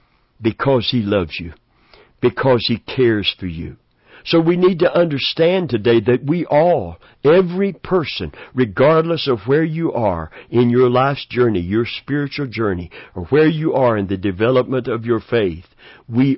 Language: English